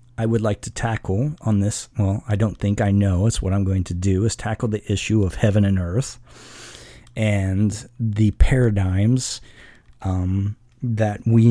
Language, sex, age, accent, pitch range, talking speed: English, male, 40-59, American, 100-120 Hz, 170 wpm